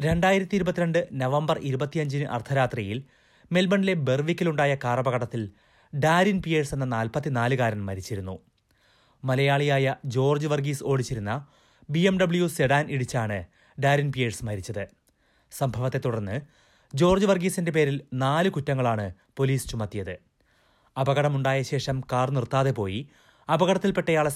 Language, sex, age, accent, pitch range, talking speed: Malayalam, male, 30-49, native, 125-160 Hz, 100 wpm